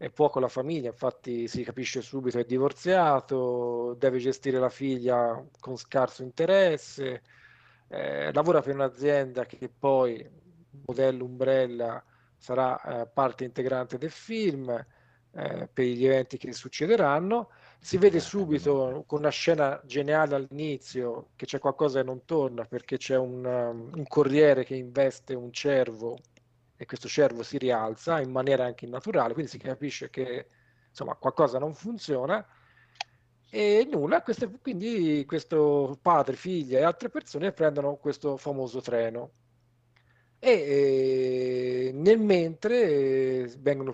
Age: 40-59